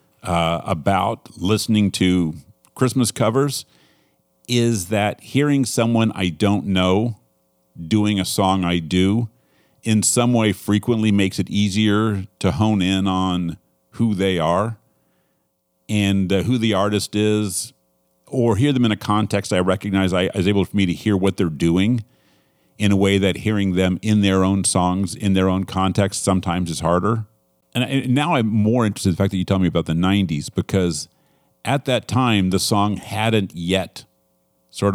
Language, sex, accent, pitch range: English, male, American, 90-110 Hz